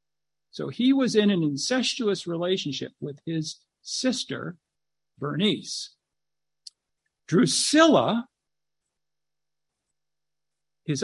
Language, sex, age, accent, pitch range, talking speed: English, male, 60-79, American, 150-220 Hz, 70 wpm